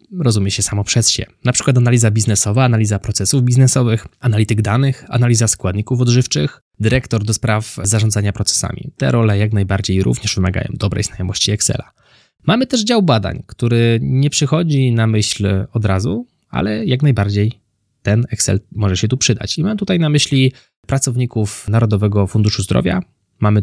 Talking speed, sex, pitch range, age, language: 155 wpm, male, 105-130 Hz, 20-39, Polish